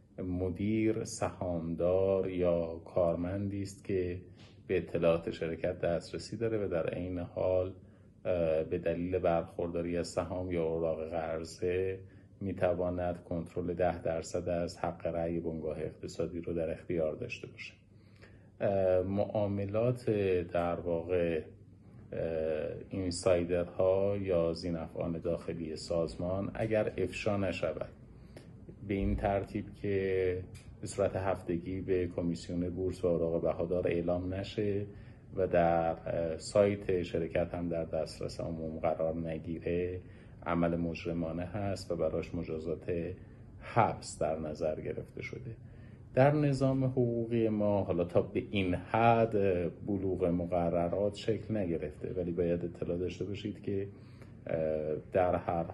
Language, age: Persian, 30-49